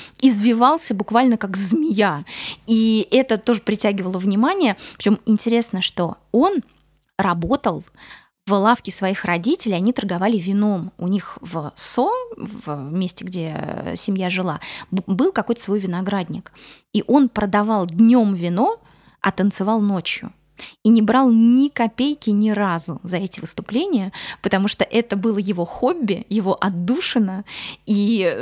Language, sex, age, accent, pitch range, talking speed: Russian, female, 20-39, native, 190-230 Hz, 130 wpm